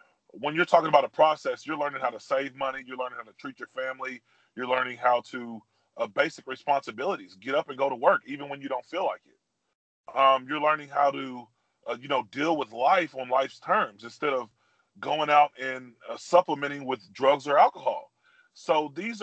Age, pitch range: 30-49, 130-150 Hz